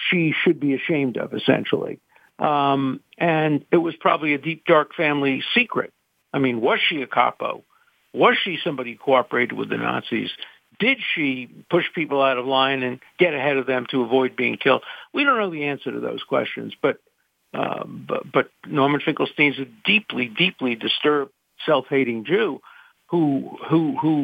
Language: English